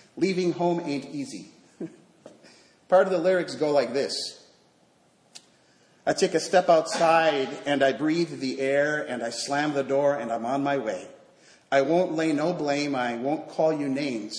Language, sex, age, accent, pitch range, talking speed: English, male, 40-59, American, 135-180 Hz, 170 wpm